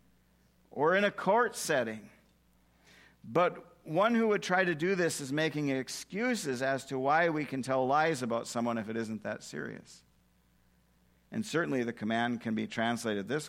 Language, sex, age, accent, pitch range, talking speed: English, male, 50-69, American, 100-135 Hz, 170 wpm